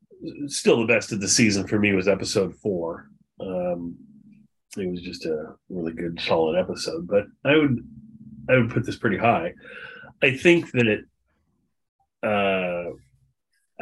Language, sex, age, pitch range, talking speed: English, male, 30-49, 100-130 Hz, 150 wpm